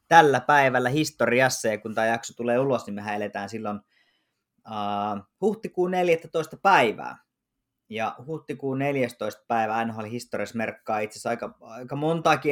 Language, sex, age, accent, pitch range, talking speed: Finnish, male, 20-39, native, 115-135 Hz, 130 wpm